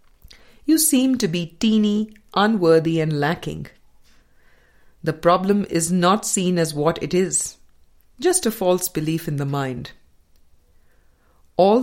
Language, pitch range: English, 135-200 Hz